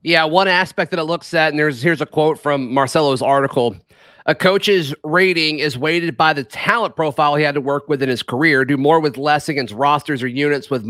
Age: 30-49